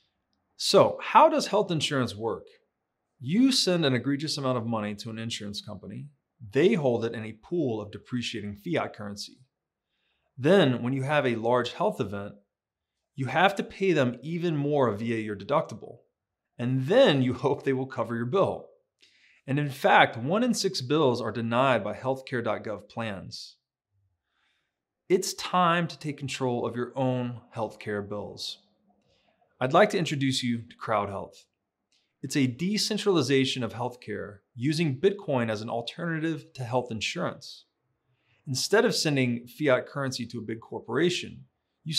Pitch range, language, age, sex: 115-155 Hz, English, 30-49, male